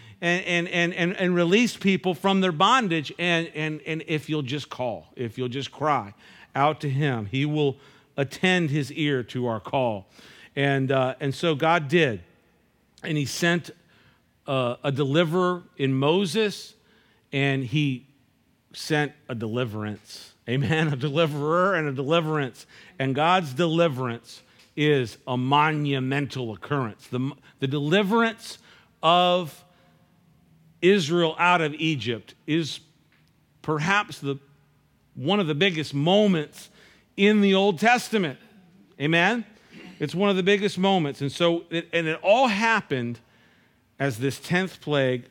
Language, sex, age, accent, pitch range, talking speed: English, male, 50-69, American, 130-175 Hz, 135 wpm